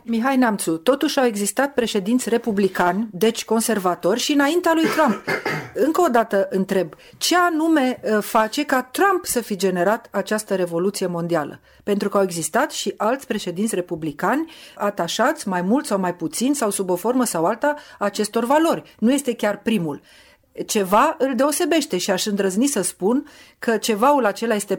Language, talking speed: Romanian, 160 wpm